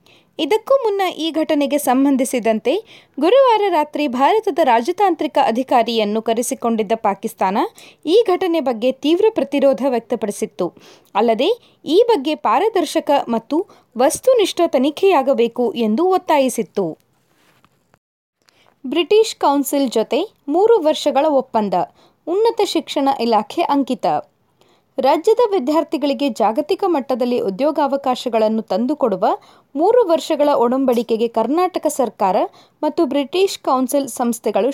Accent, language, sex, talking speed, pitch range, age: native, Kannada, female, 90 wpm, 235-345 Hz, 20-39